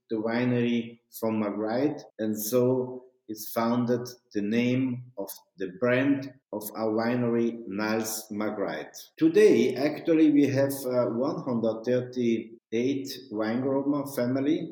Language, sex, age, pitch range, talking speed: English, male, 50-69, 115-150 Hz, 100 wpm